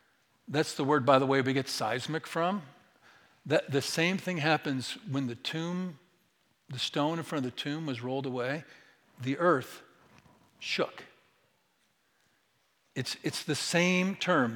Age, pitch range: 50-69, 135-180 Hz